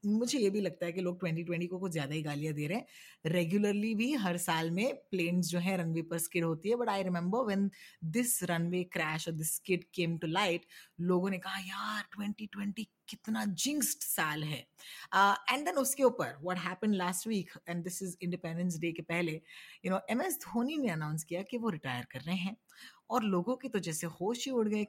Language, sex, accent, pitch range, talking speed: Hindi, female, native, 170-220 Hz, 155 wpm